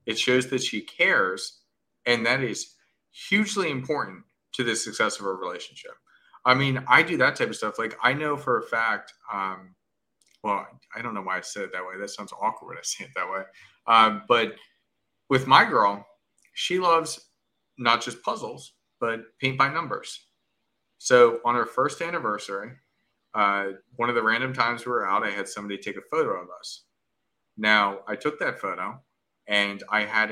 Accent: American